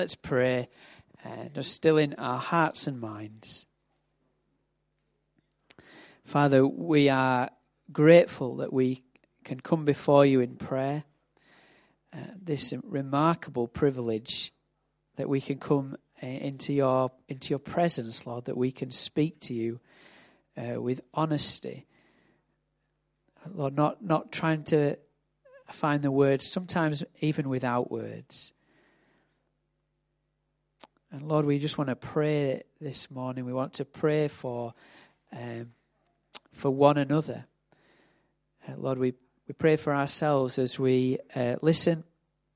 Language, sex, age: English, male, 40-59